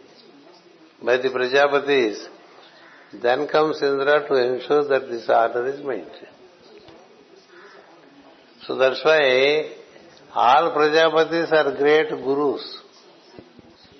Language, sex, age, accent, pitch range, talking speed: English, male, 60-79, Indian, 115-145 Hz, 90 wpm